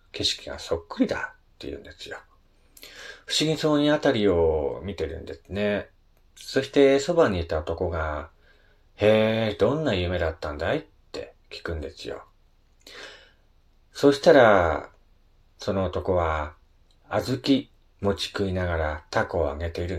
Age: 40-59